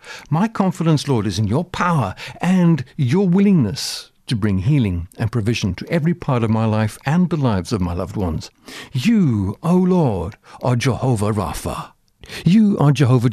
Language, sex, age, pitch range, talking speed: English, male, 60-79, 110-160 Hz, 165 wpm